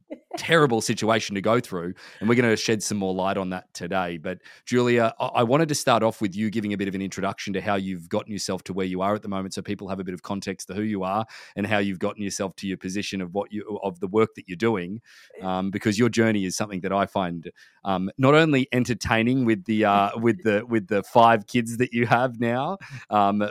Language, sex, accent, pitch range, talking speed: English, male, Australian, 95-120 Hz, 255 wpm